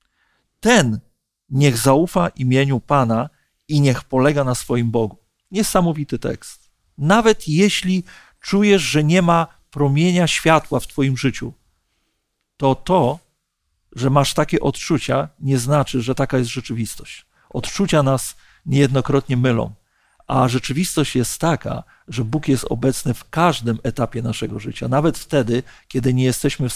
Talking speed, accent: 130 wpm, native